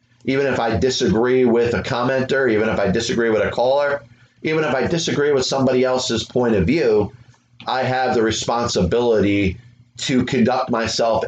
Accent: American